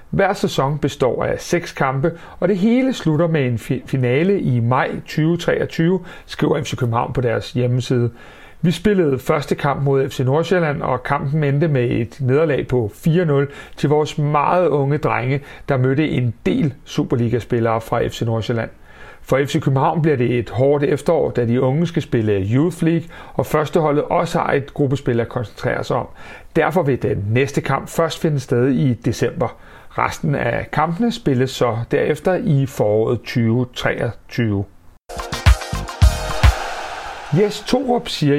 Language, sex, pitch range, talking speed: Danish, male, 125-160 Hz, 150 wpm